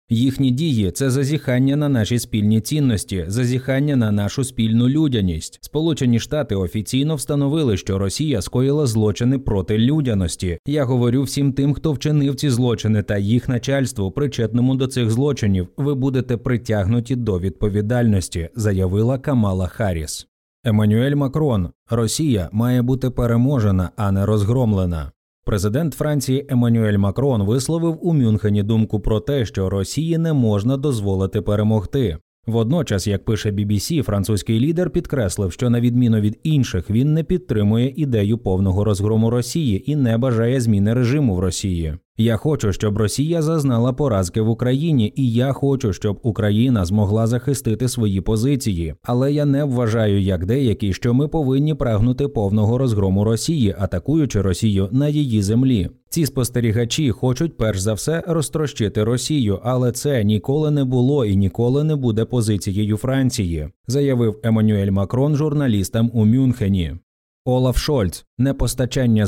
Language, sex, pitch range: Ukrainian, male, 105-135 Hz